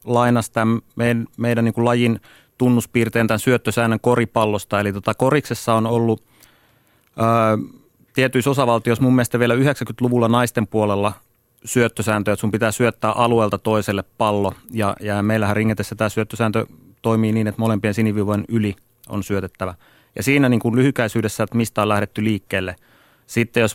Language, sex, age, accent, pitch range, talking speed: Finnish, male, 30-49, native, 100-115 Hz, 150 wpm